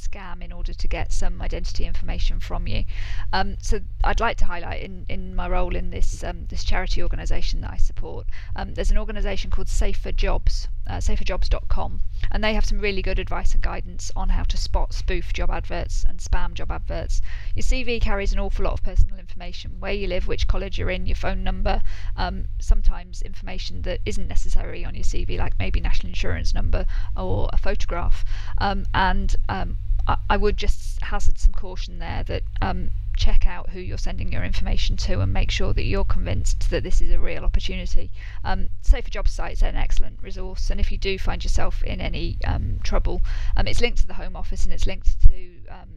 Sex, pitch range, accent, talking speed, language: female, 90-100 Hz, British, 205 wpm, English